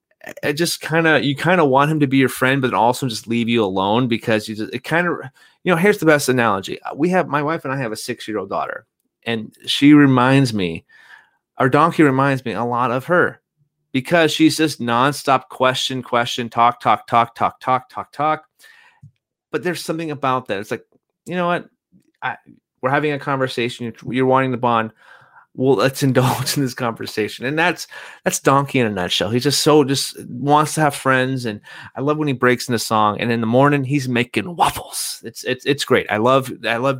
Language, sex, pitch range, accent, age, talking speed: English, male, 115-145 Hz, American, 30-49, 210 wpm